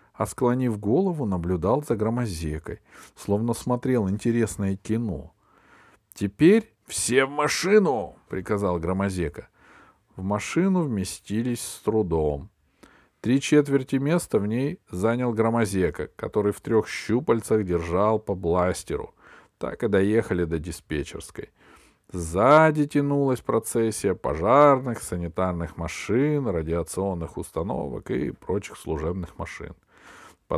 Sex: male